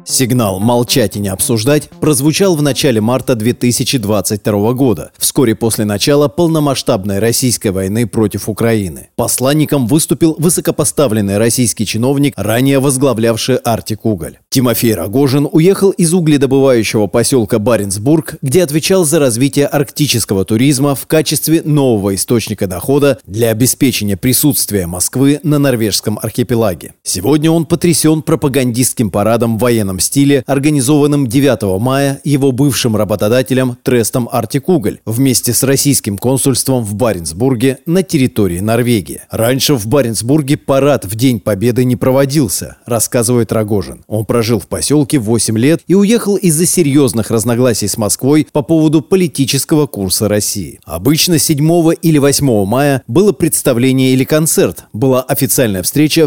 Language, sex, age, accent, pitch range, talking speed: Russian, male, 30-49, native, 110-145 Hz, 125 wpm